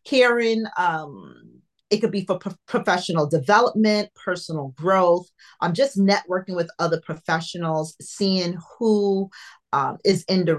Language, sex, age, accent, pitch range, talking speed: English, female, 30-49, American, 170-215 Hz, 135 wpm